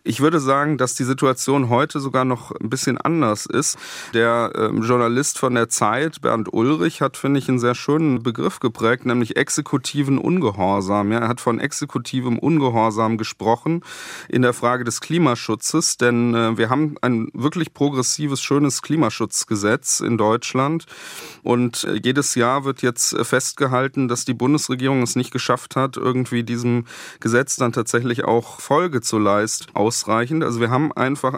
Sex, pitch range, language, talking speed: male, 120-140 Hz, German, 150 wpm